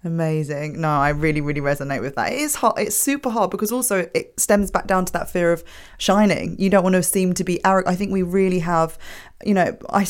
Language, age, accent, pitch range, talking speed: English, 20-39, British, 150-190 Hz, 240 wpm